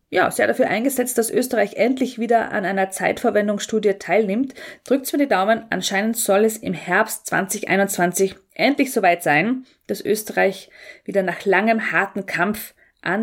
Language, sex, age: German, female, 20-39